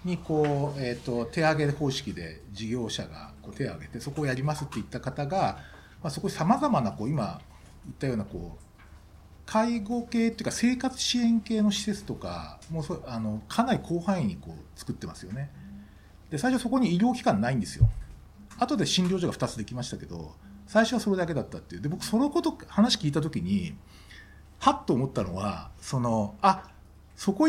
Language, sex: Japanese, male